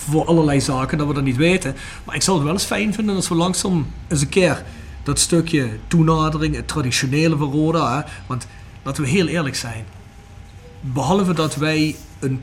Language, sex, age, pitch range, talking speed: Dutch, male, 40-59, 135-170 Hz, 195 wpm